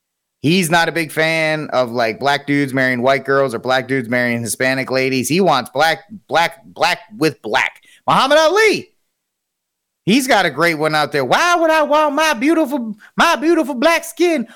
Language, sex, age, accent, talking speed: English, male, 30-49, American, 180 wpm